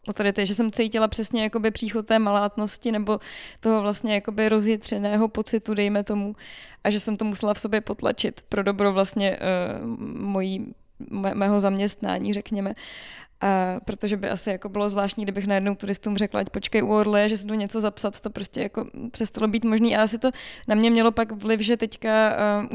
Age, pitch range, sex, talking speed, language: 20-39, 205-225 Hz, female, 185 wpm, Czech